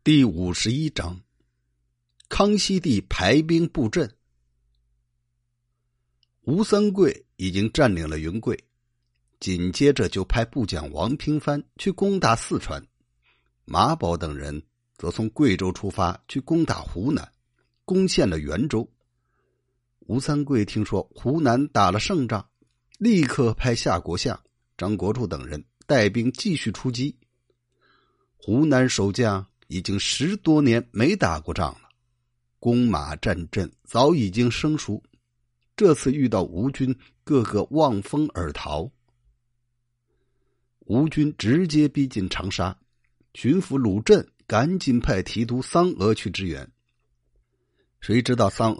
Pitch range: 95-130 Hz